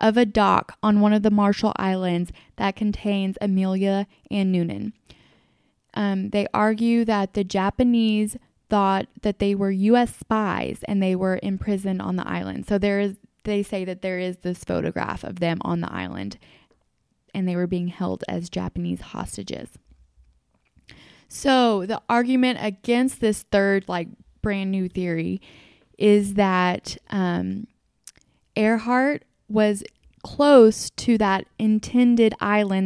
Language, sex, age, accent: English, female, 10-29, American